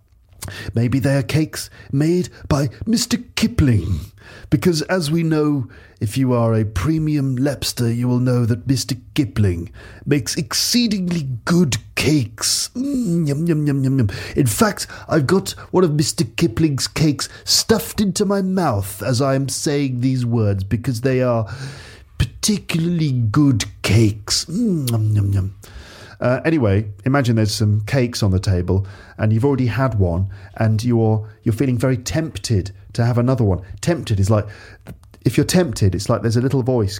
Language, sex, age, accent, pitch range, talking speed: English, male, 40-59, British, 105-150 Hz, 150 wpm